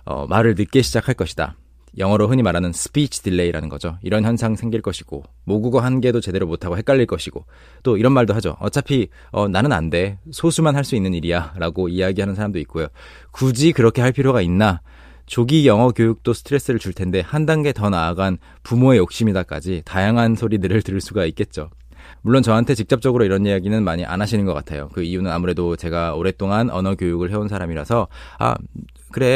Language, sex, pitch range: Korean, male, 90-120 Hz